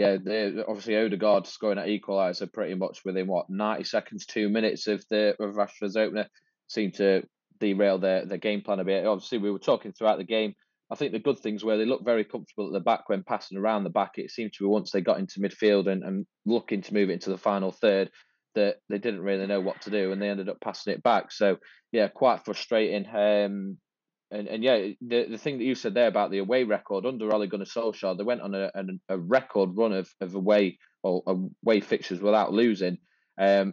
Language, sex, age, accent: English, male, 20-39, British